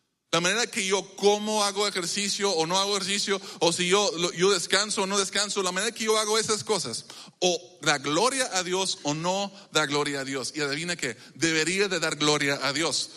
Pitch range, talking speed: 145-195 Hz, 210 wpm